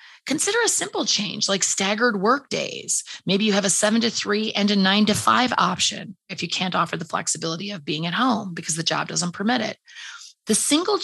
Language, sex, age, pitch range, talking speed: English, female, 30-49, 185-225 Hz, 210 wpm